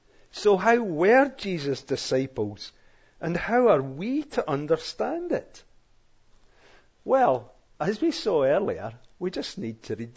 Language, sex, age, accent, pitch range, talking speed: English, male, 50-69, British, 115-170 Hz, 130 wpm